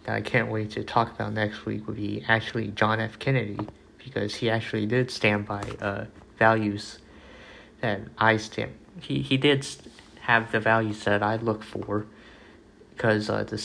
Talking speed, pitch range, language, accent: 165 wpm, 105-115 Hz, English, American